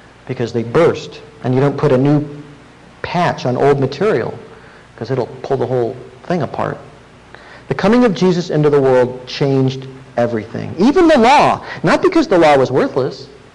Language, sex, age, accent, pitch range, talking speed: English, male, 50-69, American, 130-185 Hz, 175 wpm